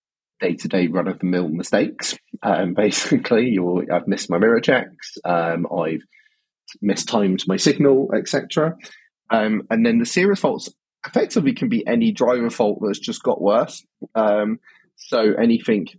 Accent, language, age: British, English, 20-39